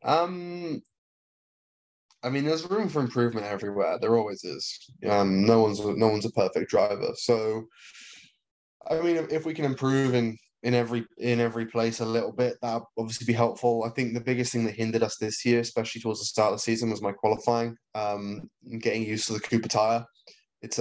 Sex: male